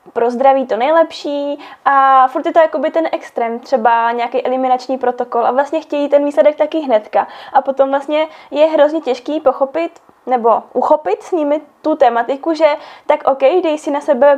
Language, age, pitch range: Czech, 20-39, 260-305 Hz